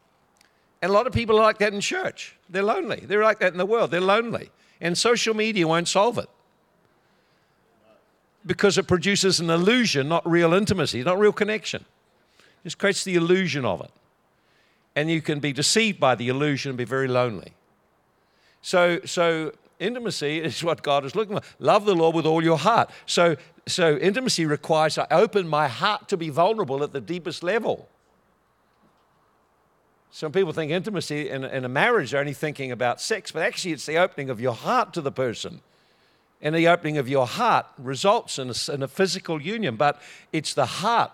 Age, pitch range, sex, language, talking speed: 60-79, 145-195 Hz, male, English, 185 wpm